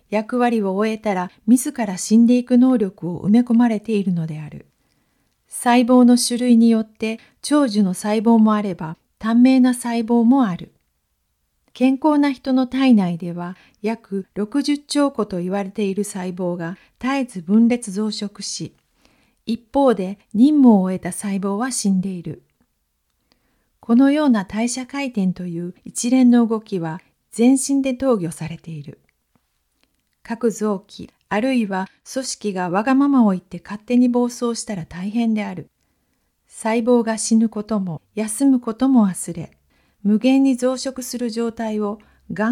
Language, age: Japanese, 40-59